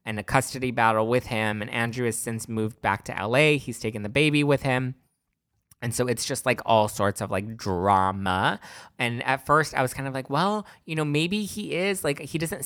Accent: American